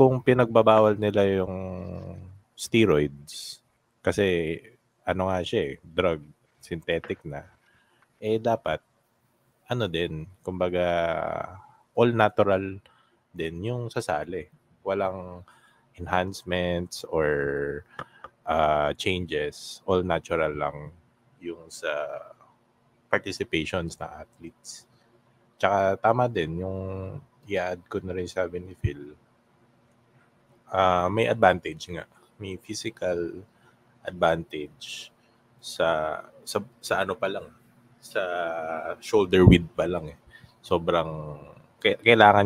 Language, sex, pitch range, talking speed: Filipino, male, 80-110 Hz, 95 wpm